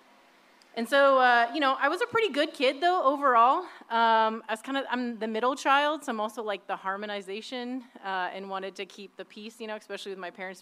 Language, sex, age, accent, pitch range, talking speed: English, female, 30-49, American, 200-255 Hz, 225 wpm